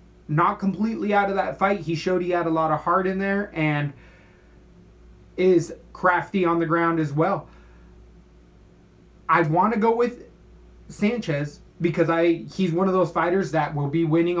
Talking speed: 170 wpm